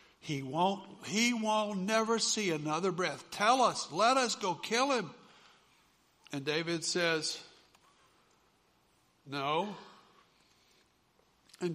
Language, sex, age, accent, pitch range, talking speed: English, male, 60-79, American, 155-200 Hz, 100 wpm